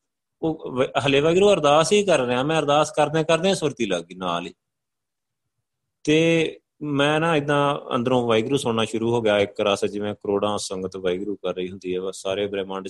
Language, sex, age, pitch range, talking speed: Punjabi, male, 30-49, 105-140 Hz, 170 wpm